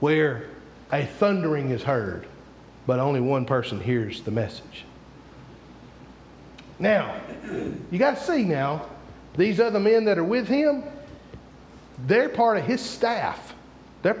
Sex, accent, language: male, American, English